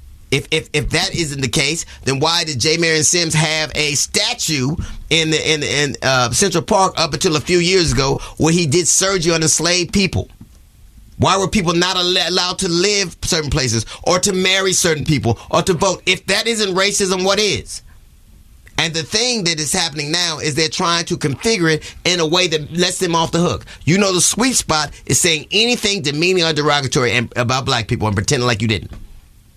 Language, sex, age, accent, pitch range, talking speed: English, male, 30-49, American, 130-180 Hz, 205 wpm